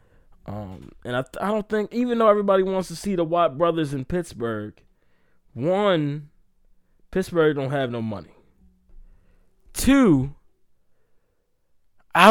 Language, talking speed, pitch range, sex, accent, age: English, 125 wpm, 110-140 Hz, male, American, 20-39